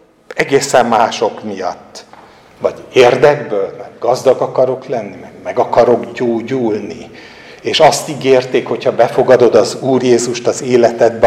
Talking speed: 130 wpm